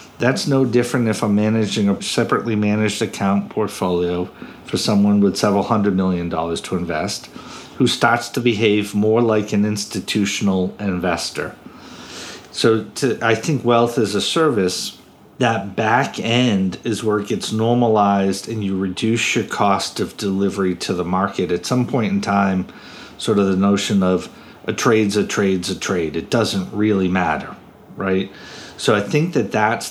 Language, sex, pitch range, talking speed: English, male, 100-115 Hz, 165 wpm